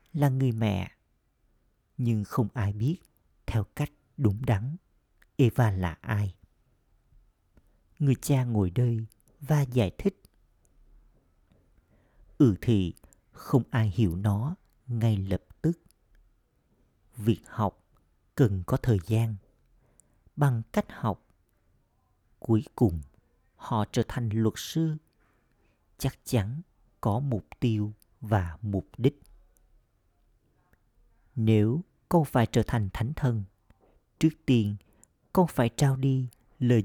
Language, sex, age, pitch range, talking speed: Vietnamese, male, 50-69, 100-130 Hz, 110 wpm